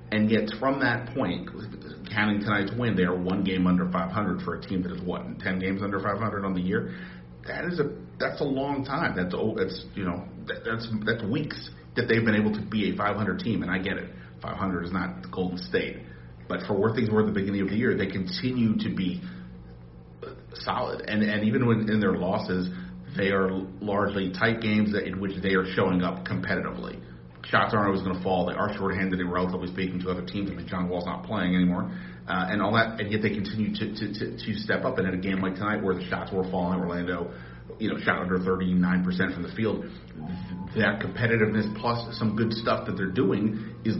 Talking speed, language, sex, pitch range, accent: 220 wpm, English, male, 90-110 Hz, American